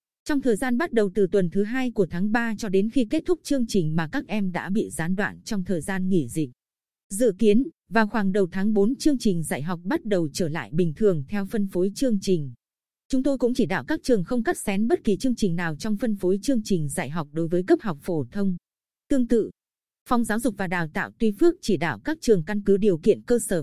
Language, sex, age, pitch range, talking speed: Vietnamese, female, 20-39, 185-235 Hz, 255 wpm